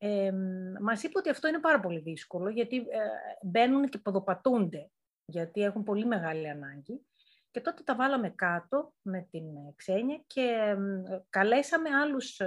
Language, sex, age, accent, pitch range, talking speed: Greek, female, 30-49, native, 180-270 Hz, 150 wpm